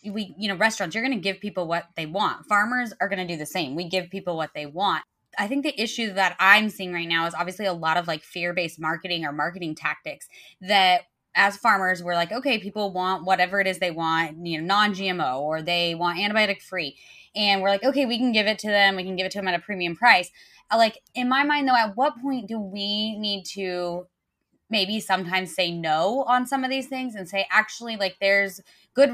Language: English